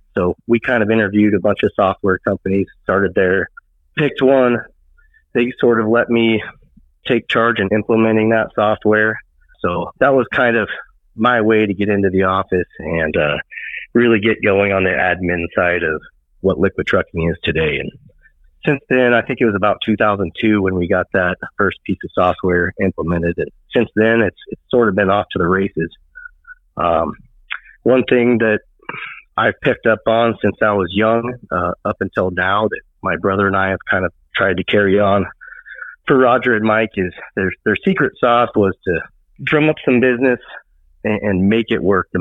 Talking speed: 185 wpm